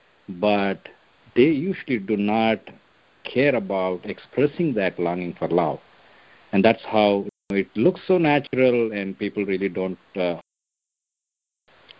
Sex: male